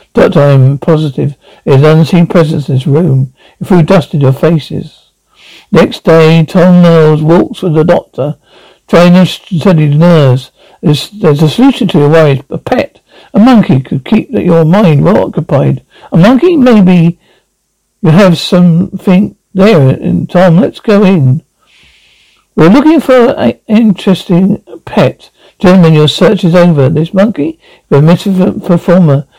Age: 60-79